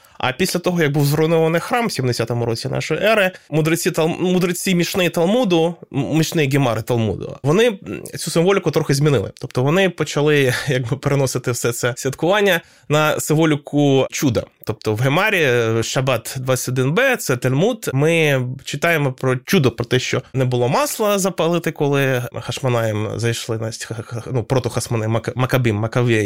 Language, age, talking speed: Ukrainian, 20-39, 135 wpm